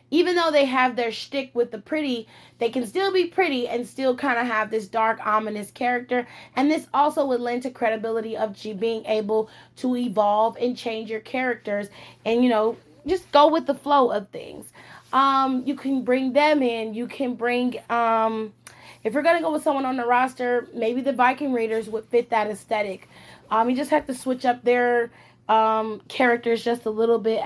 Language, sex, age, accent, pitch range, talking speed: English, female, 20-39, American, 220-260 Hz, 200 wpm